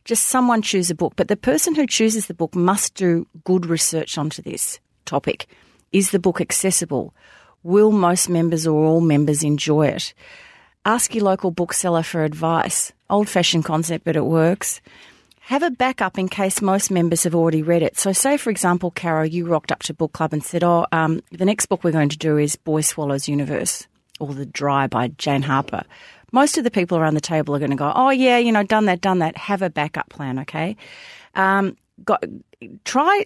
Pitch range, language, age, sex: 155-200 Hz, English, 40-59, female